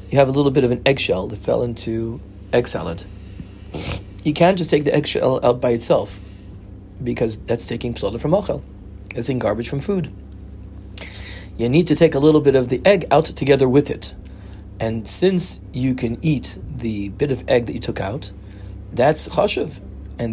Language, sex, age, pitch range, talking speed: English, male, 40-59, 100-130 Hz, 185 wpm